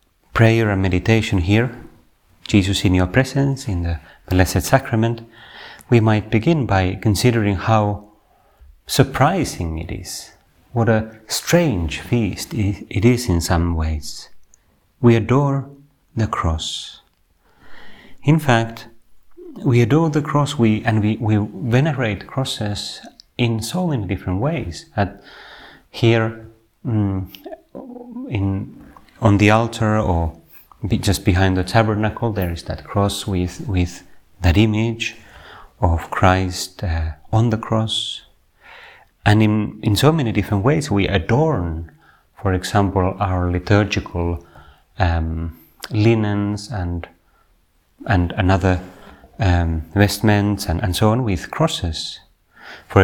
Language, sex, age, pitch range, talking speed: Finnish, male, 30-49, 90-115 Hz, 120 wpm